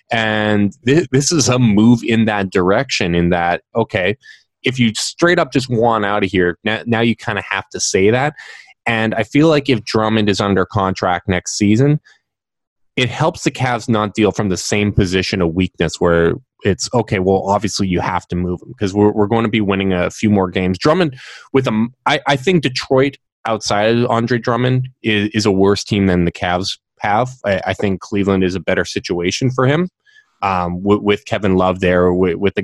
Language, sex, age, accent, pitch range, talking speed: English, male, 20-39, American, 95-115 Hz, 200 wpm